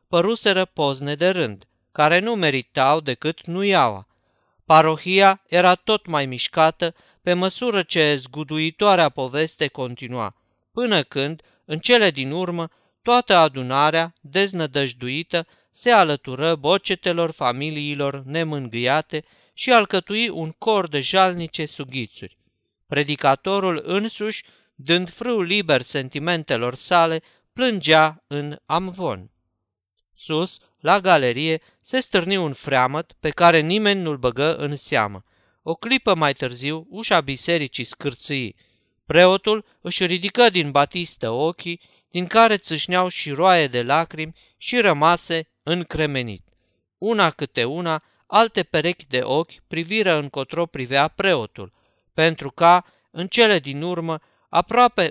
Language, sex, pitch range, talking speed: Romanian, male, 140-180 Hz, 115 wpm